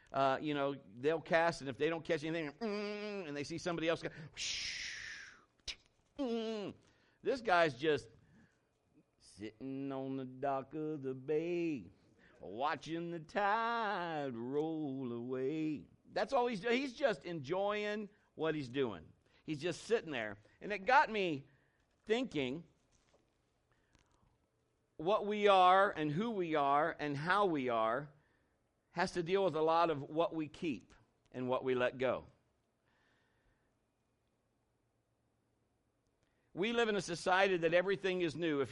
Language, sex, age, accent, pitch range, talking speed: English, male, 50-69, American, 130-180 Hz, 135 wpm